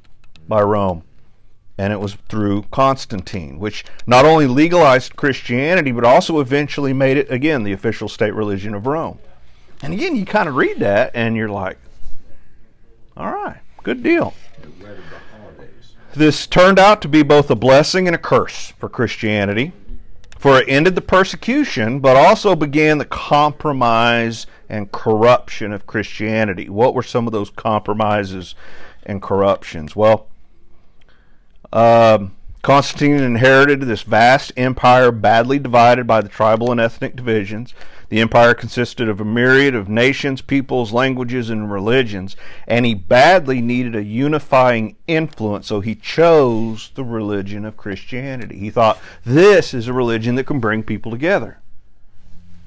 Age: 50-69